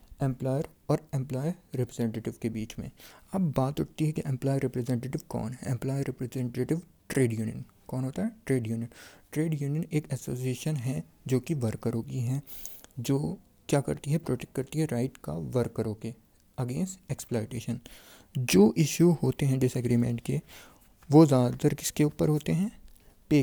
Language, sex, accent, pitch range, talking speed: Hindi, male, native, 120-150 Hz, 155 wpm